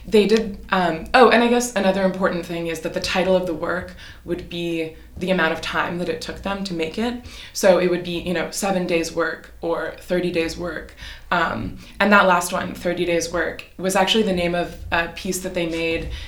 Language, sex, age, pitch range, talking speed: English, female, 20-39, 165-195 Hz, 225 wpm